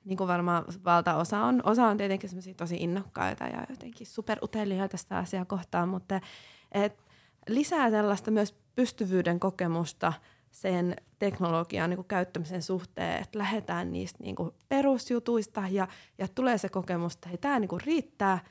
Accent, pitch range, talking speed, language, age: native, 175-215 Hz, 135 wpm, Finnish, 20-39